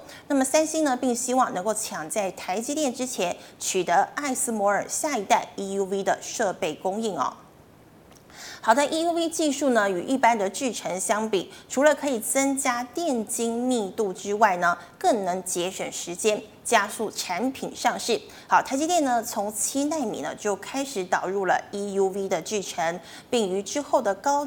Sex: female